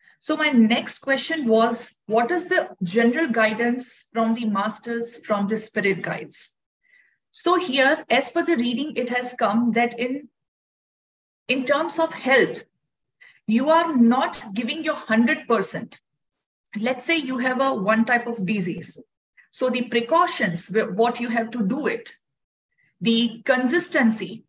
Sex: female